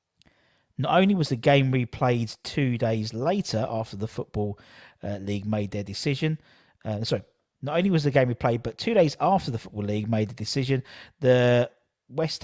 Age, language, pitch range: 40-59, English, 110-140 Hz